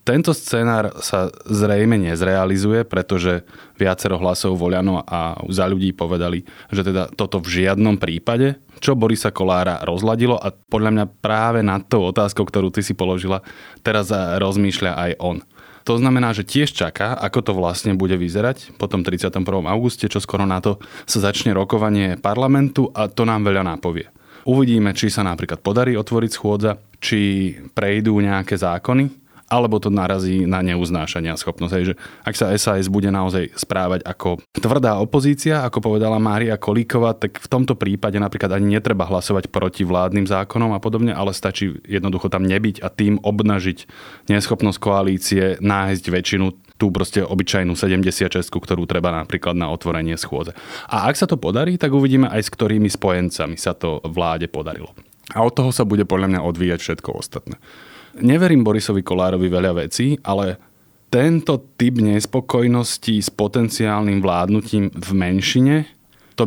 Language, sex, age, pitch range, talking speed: Slovak, male, 20-39, 95-110 Hz, 155 wpm